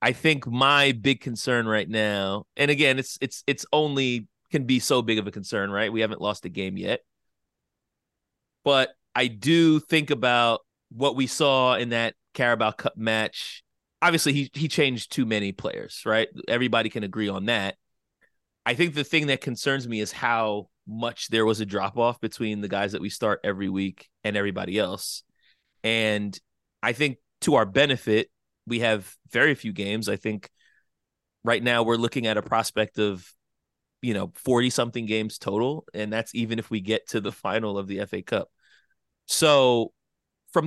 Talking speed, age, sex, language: 175 wpm, 30-49, male, English